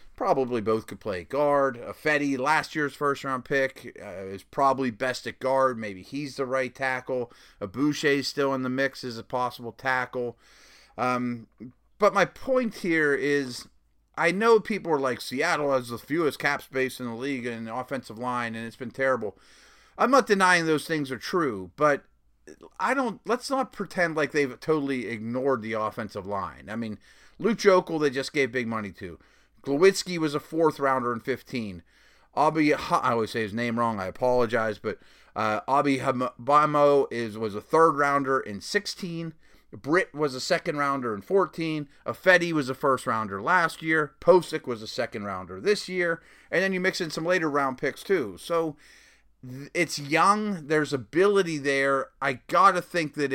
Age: 30-49